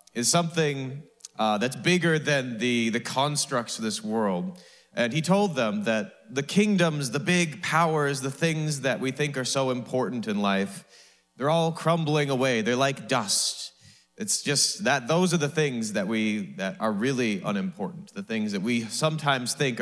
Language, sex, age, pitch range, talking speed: English, male, 30-49, 115-170 Hz, 175 wpm